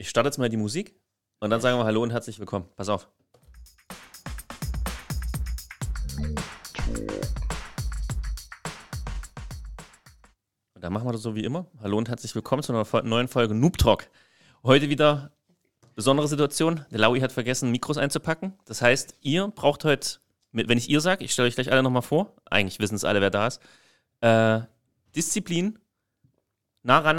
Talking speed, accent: 155 wpm, German